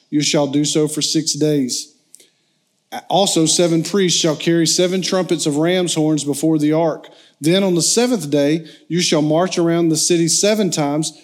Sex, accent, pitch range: male, American, 150-180 Hz